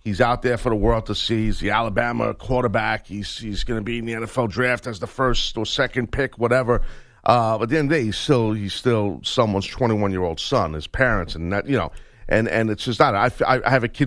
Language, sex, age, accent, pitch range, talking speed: English, male, 50-69, American, 105-130 Hz, 265 wpm